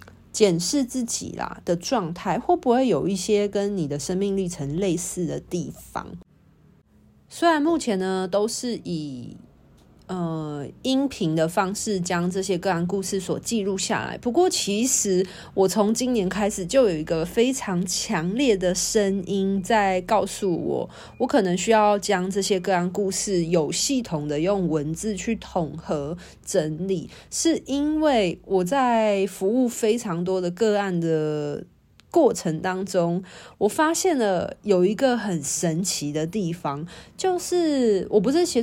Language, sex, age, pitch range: Chinese, female, 30-49, 175-230 Hz